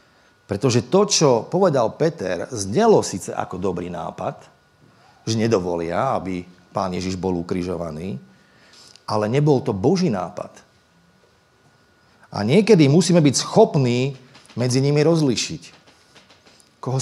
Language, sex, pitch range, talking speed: Slovak, male, 110-170 Hz, 110 wpm